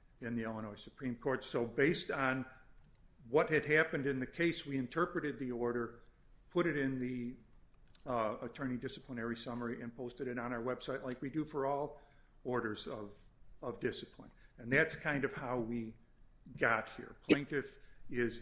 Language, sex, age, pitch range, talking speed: English, male, 50-69, 120-145 Hz, 165 wpm